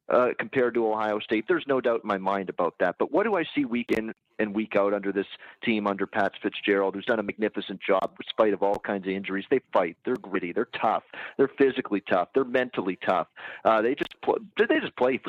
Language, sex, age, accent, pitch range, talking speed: English, male, 40-59, American, 100-130 Hz, 245 wpm